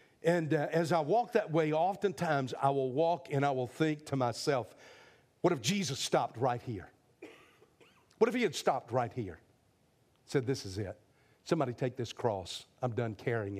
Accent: American